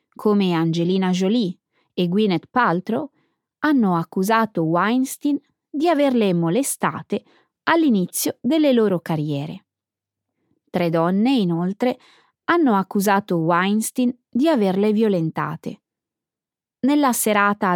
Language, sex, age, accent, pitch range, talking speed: Italian, female, 20-39, native, 175-250 Hz, 90 wpm